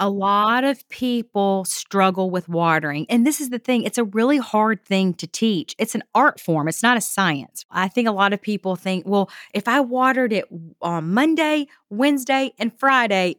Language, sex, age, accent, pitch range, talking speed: English, female, 40-59, American, 180-235 Hz, 195 wpm